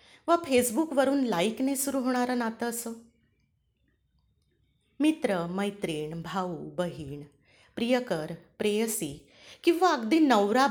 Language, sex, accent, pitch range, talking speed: Marathi, female, native, 170-245 Hz, 90 wpm